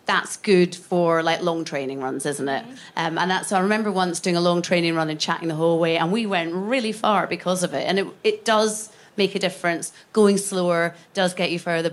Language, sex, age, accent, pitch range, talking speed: English, female, 30-49, British, 170-210 Hz, 230 wpm